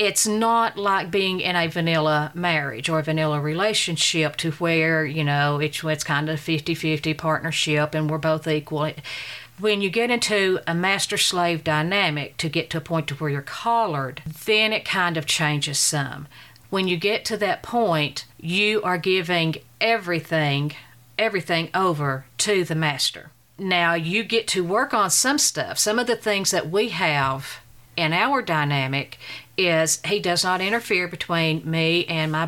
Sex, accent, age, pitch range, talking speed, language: female, American, 50-69, 150-185 Hz, 165 wpm, English